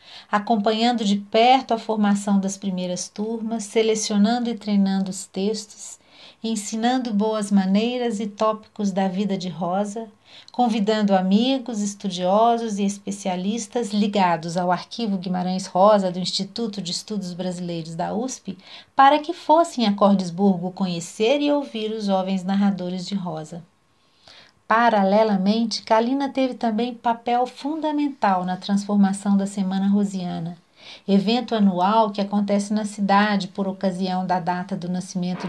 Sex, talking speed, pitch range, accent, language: female, 125 wpm, 185-230 Hz, Brazilian, Portuguese